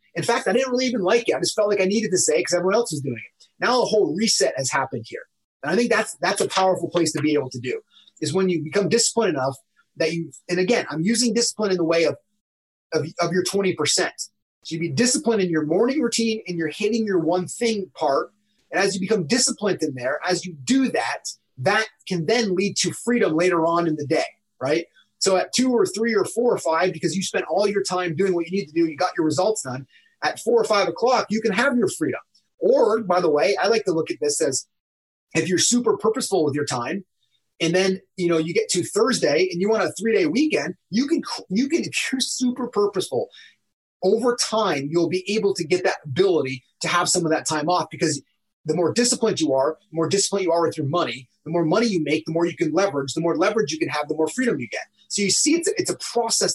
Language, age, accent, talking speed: English, 30-49, American, 250 wpm